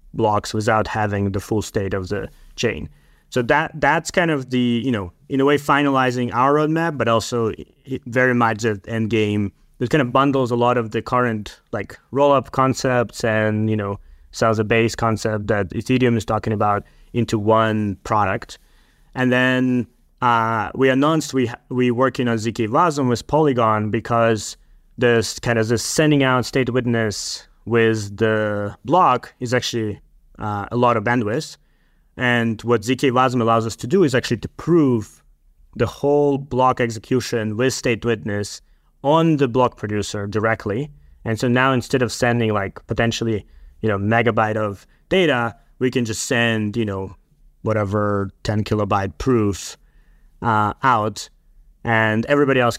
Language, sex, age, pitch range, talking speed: English, male, 20-39, 105-130 Hz, 160 wpm